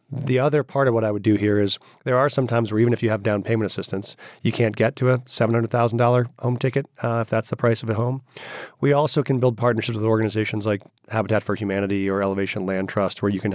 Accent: American